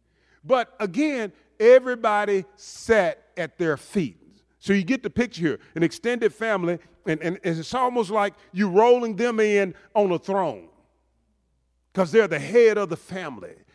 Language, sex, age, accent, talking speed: English, male, 40-59, American, 155 wpm